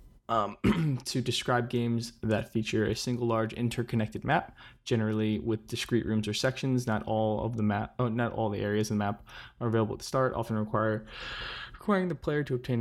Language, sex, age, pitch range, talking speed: English, male, 20-39, 110-125 Hz, 195 wpm